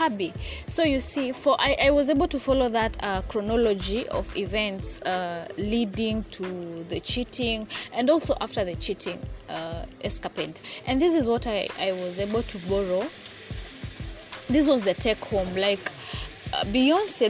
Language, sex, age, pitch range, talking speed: English, female, 20-39, 200-250 Hz, 160 wpm